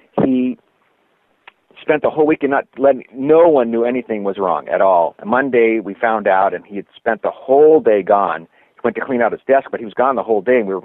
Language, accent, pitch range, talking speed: English, American, 100-130 Hz, 240 wpm